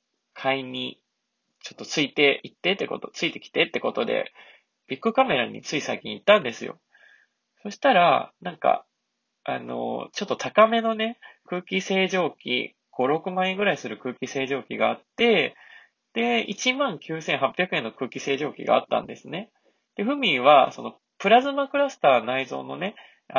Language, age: Japanese, 20-39